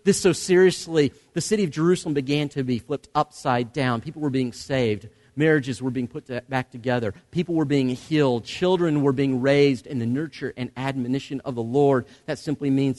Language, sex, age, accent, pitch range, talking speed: English, male, 40-59, American, 135-215 Hz, 195 wpm